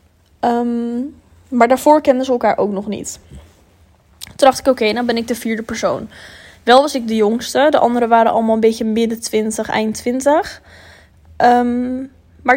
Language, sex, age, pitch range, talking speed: Dutch, female, 10-29, 220-265 Hz, 180 wpm